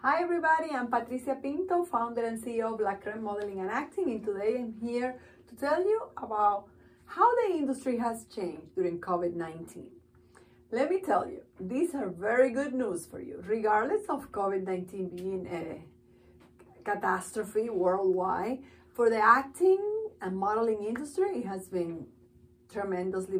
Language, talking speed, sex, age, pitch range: English, 145 wpm, female, 40-59, 205-265 Hz